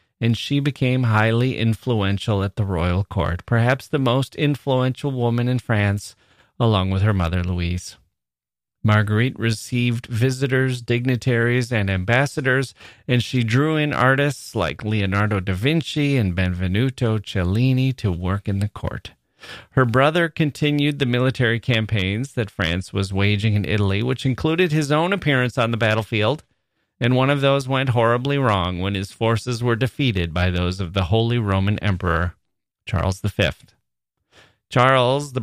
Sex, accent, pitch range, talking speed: male, American, 100-130 Hz, 145 wpm